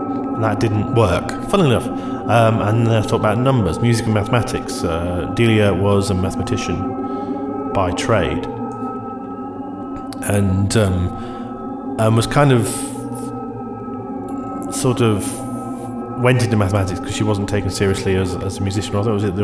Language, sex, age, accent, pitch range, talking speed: English, male, 30-49, British, 95-120 Hz, 150 wpm